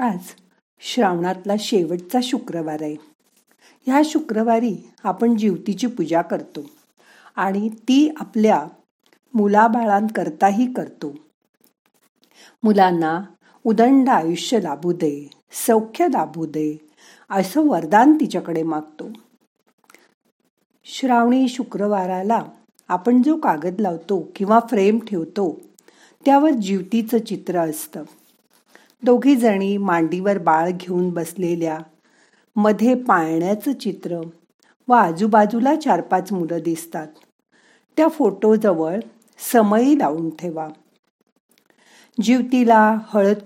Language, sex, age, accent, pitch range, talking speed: Marathi, female, 50-69, native, 175-245 Hz, 85 wpm